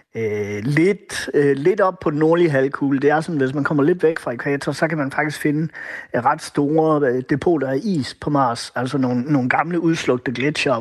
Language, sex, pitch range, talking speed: Danish, male, 135-165 Hz, 205 wpm